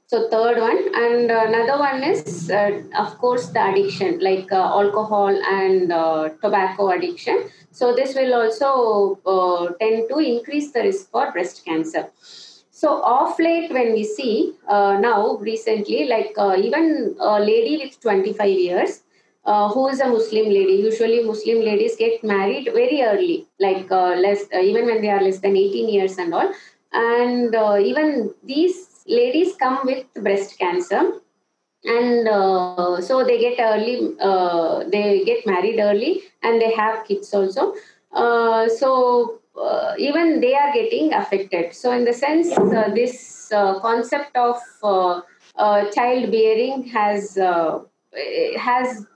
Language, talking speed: English, 150 wpm